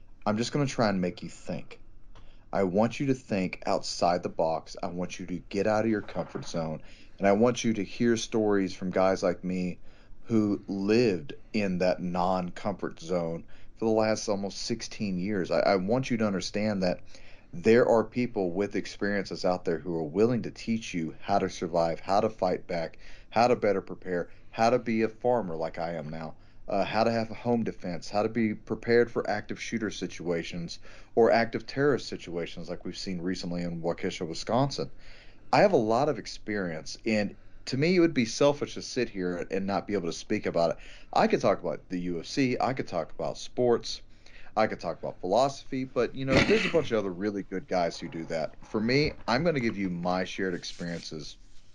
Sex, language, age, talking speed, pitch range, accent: male, English, 40-59, 210 wpm, 90-115 Hz, American